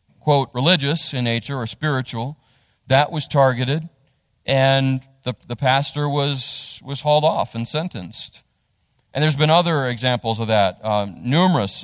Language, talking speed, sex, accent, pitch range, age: English, 140 wpm, male, American, 120-165 Hz, 30-49